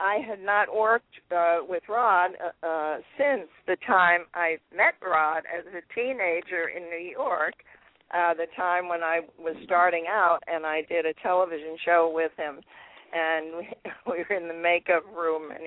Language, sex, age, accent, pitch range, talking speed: English, female, 50-69, American, 160-185 Hz, 170 wpm